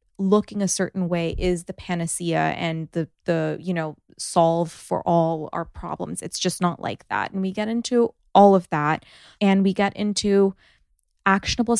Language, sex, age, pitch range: English, female, 20-39, 170-200 Hz